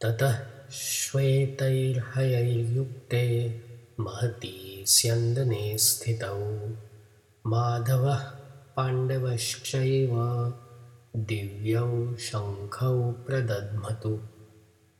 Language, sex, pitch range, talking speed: English, male, 105-120 Hz, 50 wpm